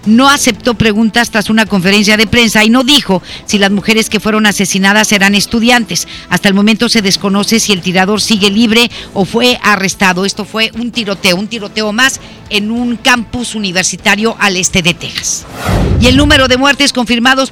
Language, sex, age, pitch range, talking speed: Spanish, female, 50-69, 205-240 Hz, 180 wpm